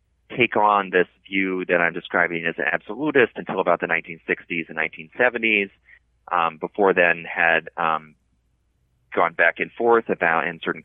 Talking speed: 155 wpm